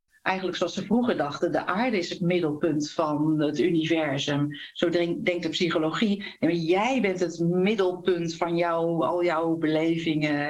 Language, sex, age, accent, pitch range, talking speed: Dutch, female, 50-69, Dutch, 155-185 Hz, 160 wpm